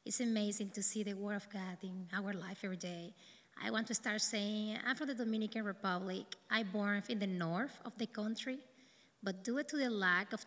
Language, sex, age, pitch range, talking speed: English, female, 20-39, 190-220 Hz, 210 wpm